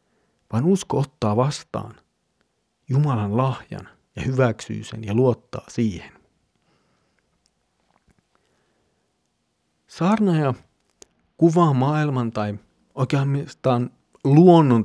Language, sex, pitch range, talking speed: Finnish, male, 115-165 Hz, 75 wpm